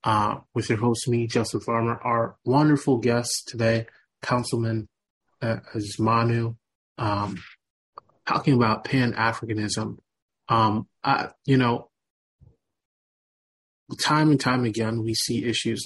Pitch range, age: 110-120 Hz, 30-49